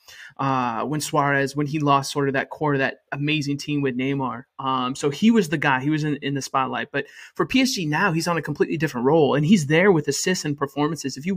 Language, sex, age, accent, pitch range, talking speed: English, male, 20-39, American, 140-175 Hz, 245 wpm